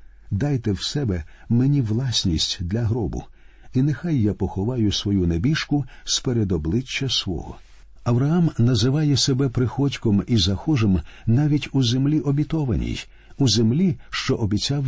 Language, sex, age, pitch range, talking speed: Ukrainian, male, 50-69, 95-135 Hz, 115 wpm